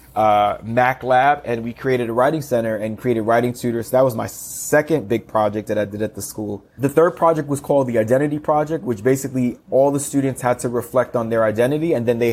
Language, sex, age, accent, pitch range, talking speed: English, male, 20-39, American, 115-140 Hz, 230 wpm